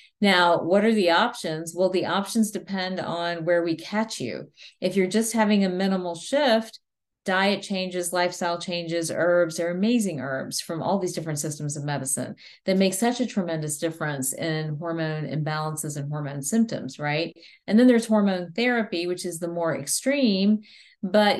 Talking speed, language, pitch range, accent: 170 wpm, English, 160-195 Hz, American